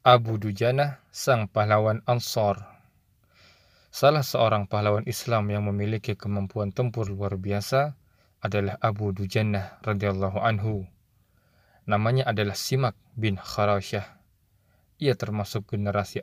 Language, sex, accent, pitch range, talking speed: Indonesian, male, native, 100-120 Hz, 105 wpm